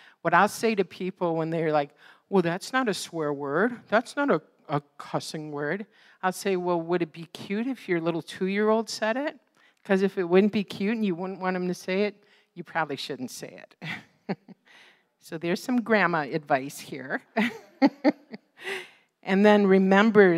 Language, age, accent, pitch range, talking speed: English, 50-69, American, 160-205 Hz, 180 wpm